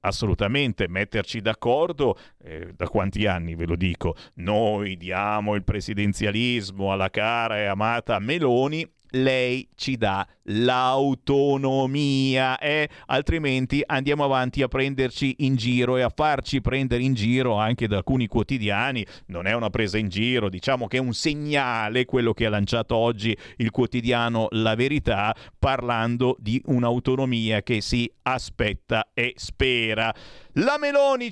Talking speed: 135 wpm